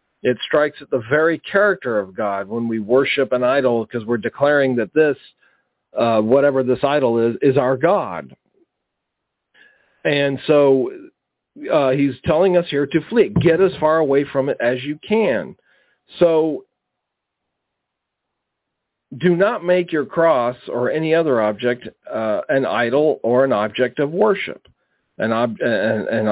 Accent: American